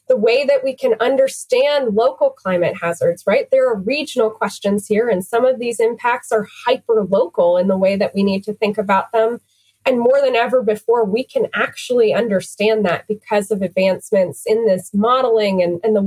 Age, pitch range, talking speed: 20-39, 195-255 Hz, 190 wpm